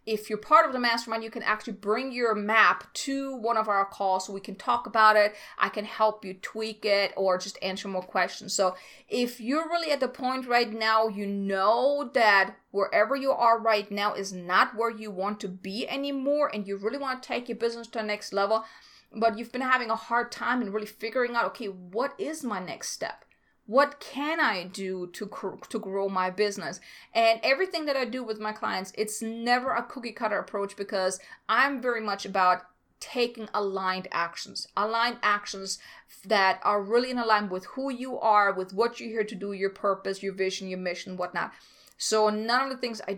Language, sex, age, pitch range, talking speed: English, female, 30-49, 195-240 Hz, 205 wpm